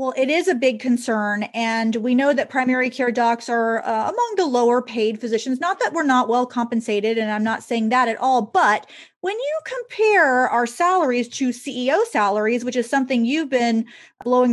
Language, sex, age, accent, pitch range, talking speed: English, female, 30-49, American, 230-290 Hz, 200 wpm